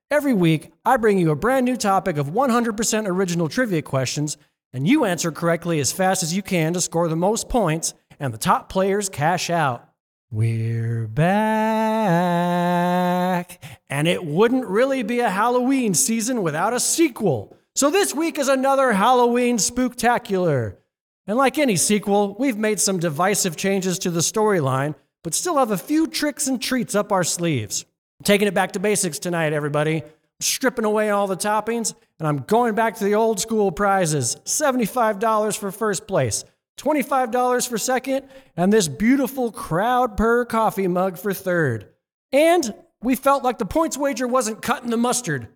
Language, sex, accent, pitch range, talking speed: English, male, American, 170-245 Hz, 165 wpm